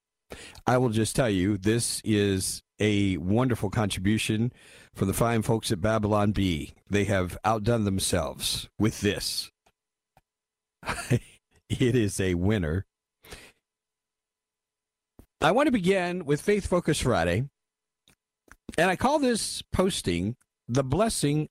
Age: 50-69